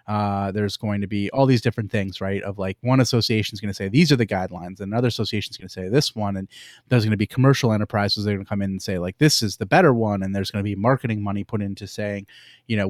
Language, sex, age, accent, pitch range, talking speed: English, male, 30-49, American, 100-115 Hz, 265 wpm